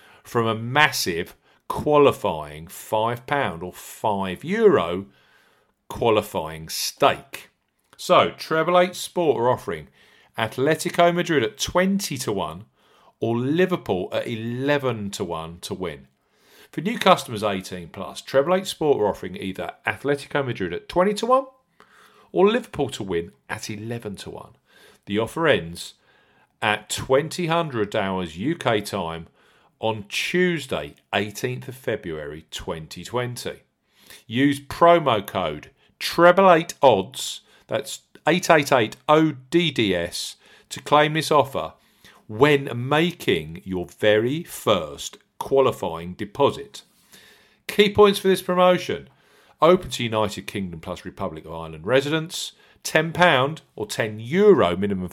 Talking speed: 120 wpm